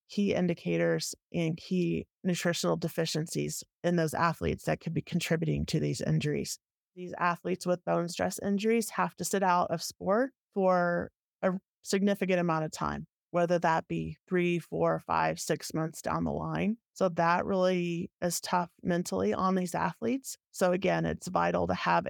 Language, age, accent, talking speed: English, 30-49, American, 165 wpm